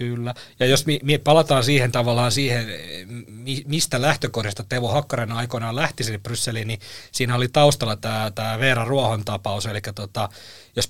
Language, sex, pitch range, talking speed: Finnish, male, 115-140 Hz, 150 wpm